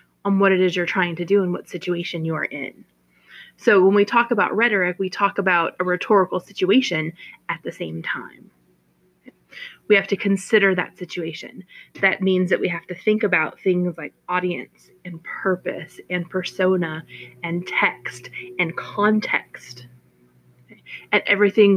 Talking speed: 165 wpm